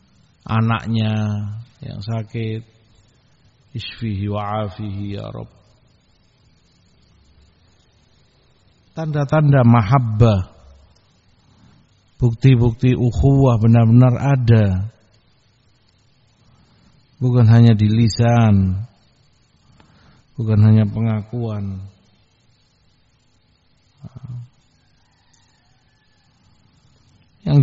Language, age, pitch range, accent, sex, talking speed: Indonesian, 50-69, 105-125 Hz, native, male, 45 wpm